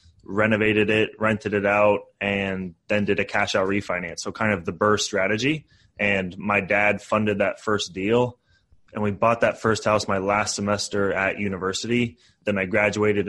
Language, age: English, 20-39